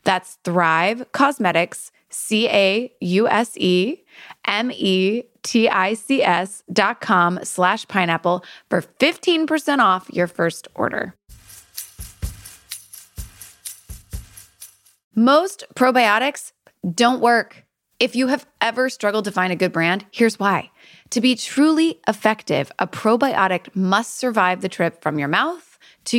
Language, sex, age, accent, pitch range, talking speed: English, female, 20-39, American, 180-245 Hz, 100 wpm